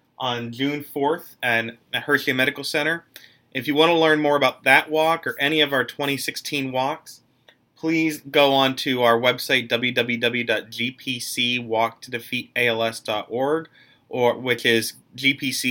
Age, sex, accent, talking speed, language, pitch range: 30-49, male, American, 120 wpm, English, 115-135 Hz